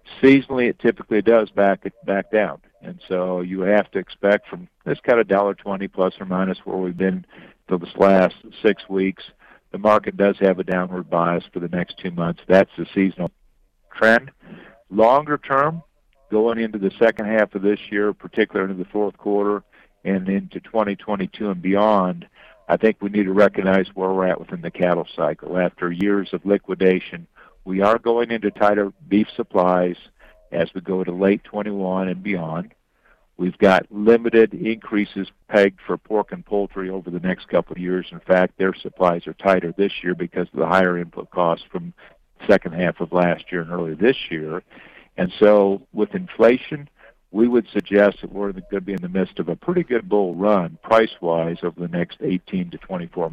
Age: 50-69